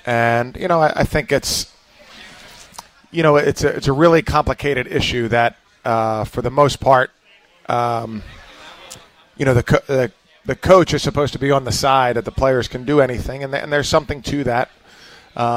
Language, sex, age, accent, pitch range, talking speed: English, male, 20-39, American, 115-140 Hz, 195 wpm